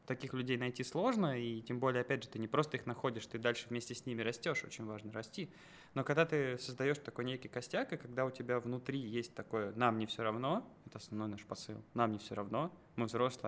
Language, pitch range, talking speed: Russian, 115-150 Hz, 225 wpm